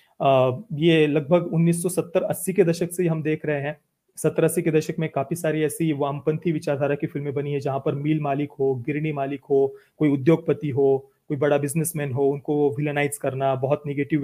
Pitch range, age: 145-175 Hz, 30-49